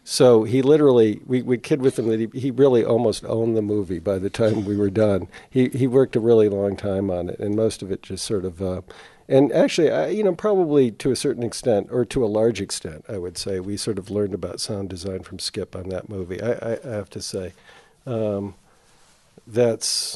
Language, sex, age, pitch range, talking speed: English, male, 50-69, 100-120 Hz, 225 wpm